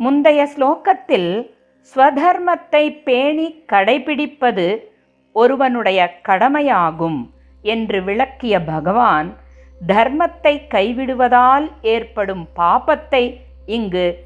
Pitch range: 175-270 Hz